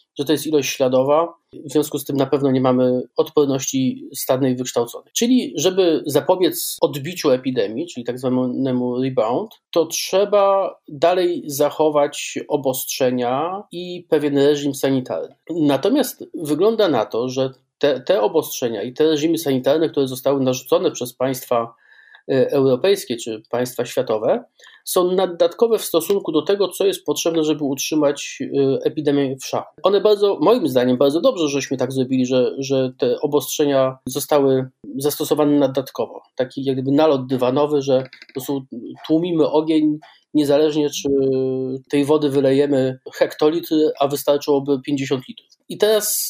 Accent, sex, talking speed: native, male, 135 wpm